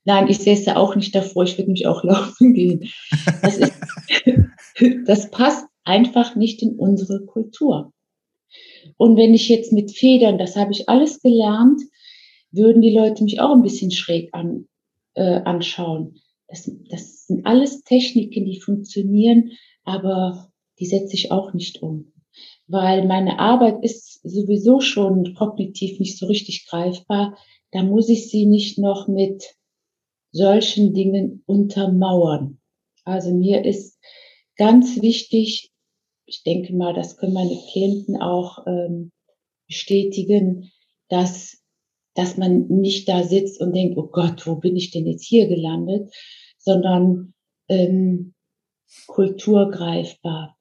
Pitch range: 185-220 Hz